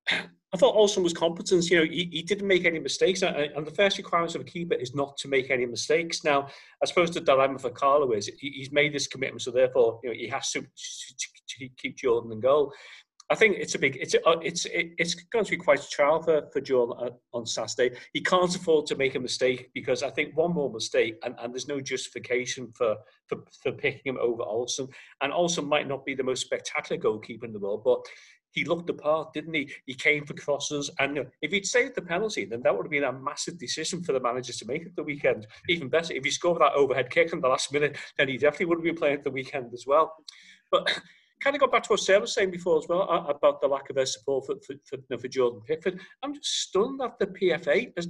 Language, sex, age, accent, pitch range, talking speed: English, male, 40-59, British, 140-195 Hz, 250 wpm